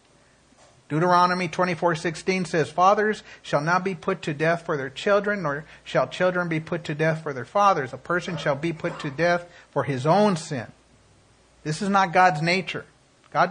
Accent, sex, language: American, male, English